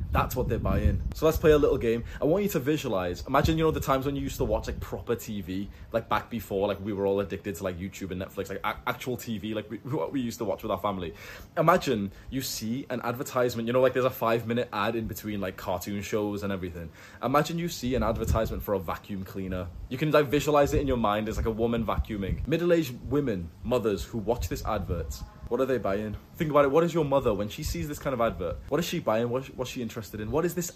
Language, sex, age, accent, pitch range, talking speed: English, male, 20-39, British, 105-150 Hz, 260 wpm